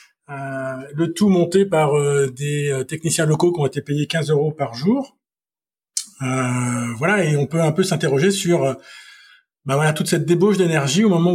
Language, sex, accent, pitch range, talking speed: French, male, French, 135-170 Hz, 185 wpm